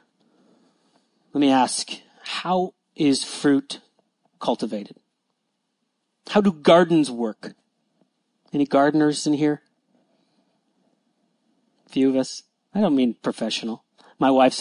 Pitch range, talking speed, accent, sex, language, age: 140-235 Hz, 105 wpm, American, male, English, 30-49